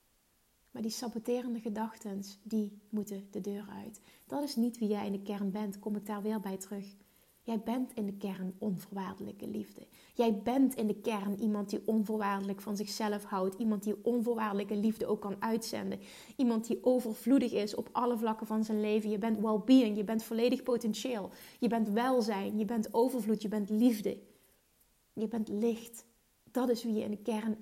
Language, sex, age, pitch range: Dutch, female, 30-49, 205-235 Hz